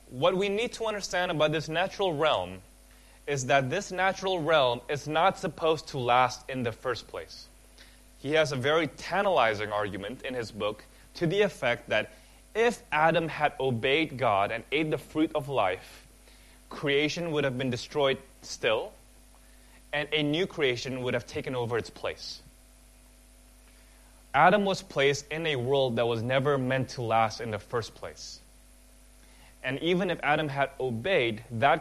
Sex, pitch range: male, 125-160 Hz